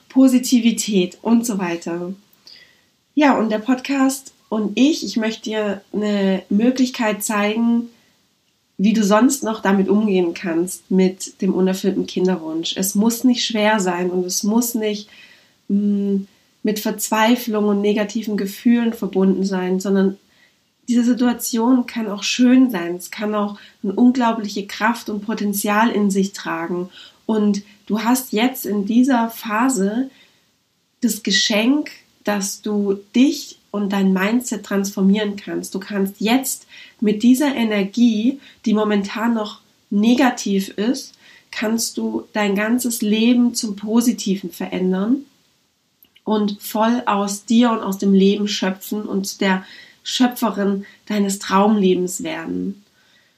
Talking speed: 125 wpm